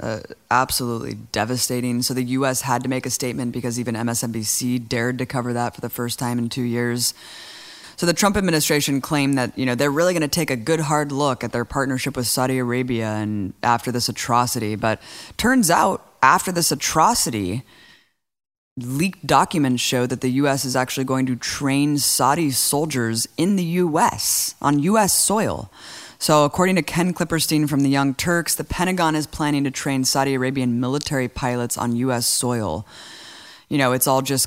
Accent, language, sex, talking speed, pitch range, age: American, English, female, 180 wpm, 125-145 Hz, 20-39